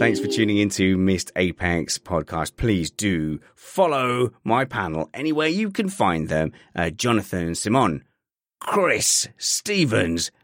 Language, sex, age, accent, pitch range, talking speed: English, male, 30-49, British, 90-150 Hz, 130 wpm